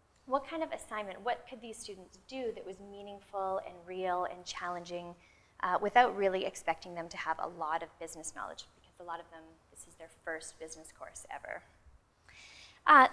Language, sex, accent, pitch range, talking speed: English, female, American, 170-205 Hz, 185 wpm